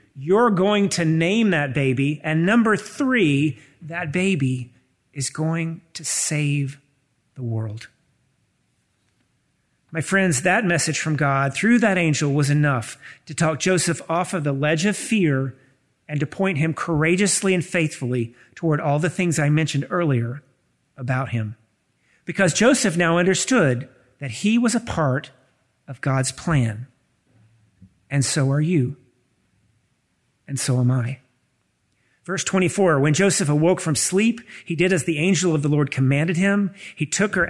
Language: English